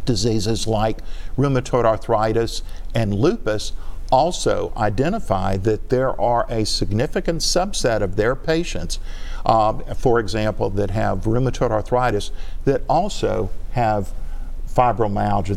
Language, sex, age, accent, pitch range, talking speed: English, male, 50-69, American, 100-125 Hz, 110 wpm